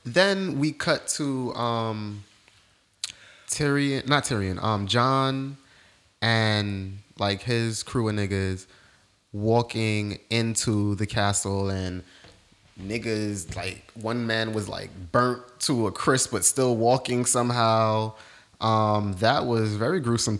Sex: male